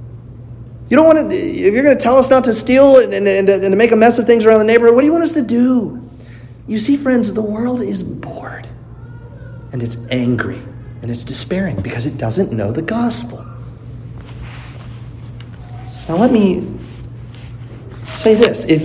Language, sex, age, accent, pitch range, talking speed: English, male, 30-49, American, 120-170 Hz, 180 wpm